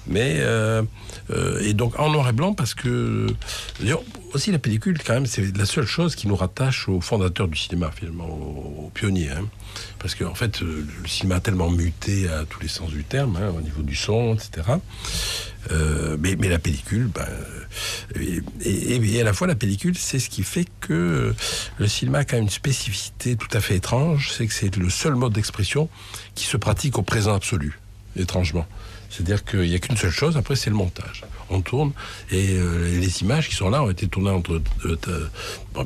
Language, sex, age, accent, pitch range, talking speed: Italian, male, 60-79, French, 90-115 Hz, 205 wpm